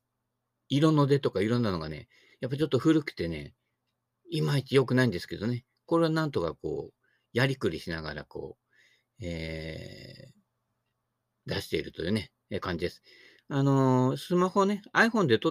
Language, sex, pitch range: Japanese, male, 110-155 Hz